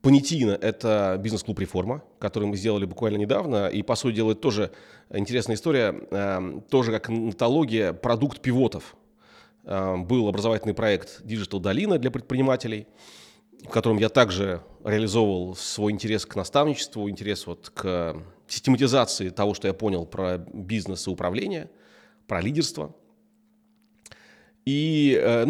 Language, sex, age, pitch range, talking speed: Russian, male, 30-49, 100-130 Hz, 130 wpm